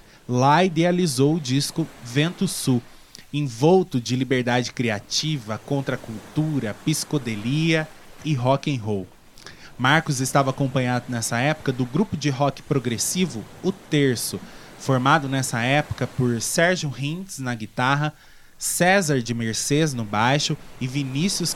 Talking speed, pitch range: 120 wpm, 125-160 Hz